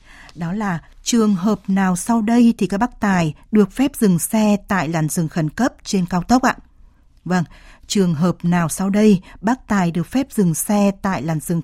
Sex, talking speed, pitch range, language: female, 200 wpm, 175-220 Hz, Vietnamese